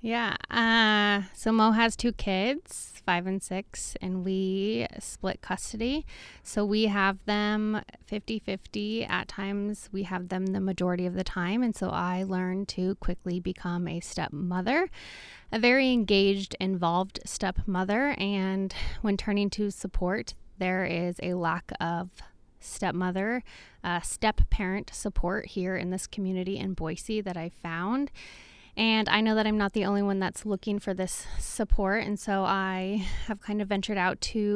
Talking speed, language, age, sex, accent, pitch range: 155 wpm, English, 20-39, female, American, 185-215 Hz